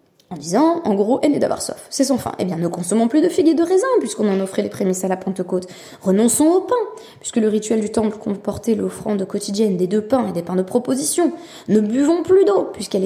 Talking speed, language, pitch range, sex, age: 240 wpm, French, 190-270 Hz, female, 20-39